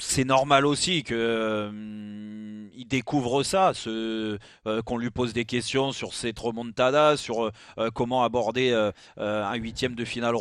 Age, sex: 30-49, male